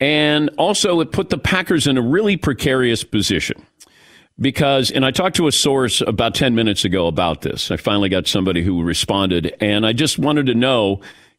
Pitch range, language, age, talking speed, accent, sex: 115-150 Hz, English, 50-69, 190 wpm, American, male